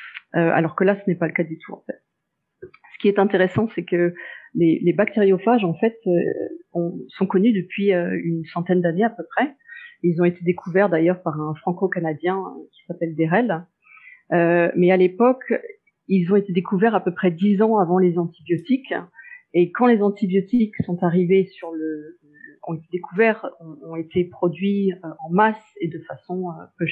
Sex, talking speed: female, 180 wpm